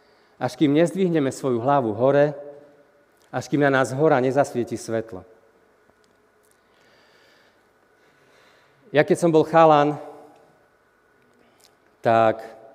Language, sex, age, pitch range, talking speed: Slovak, male, 40-59, 130-150 Hz, 90 wpm